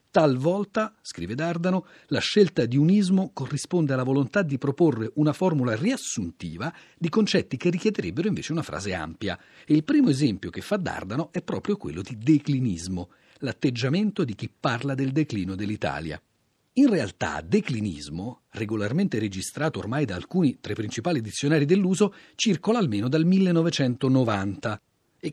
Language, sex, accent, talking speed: Italian, male, native, 140 wpm